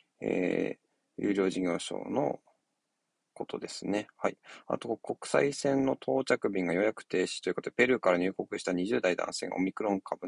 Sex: male